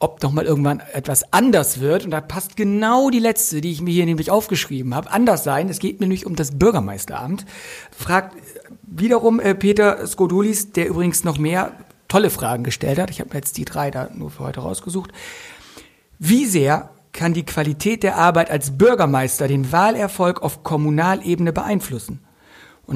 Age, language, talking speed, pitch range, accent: 60-79, German, 170 wpm, 155-210 Hz, German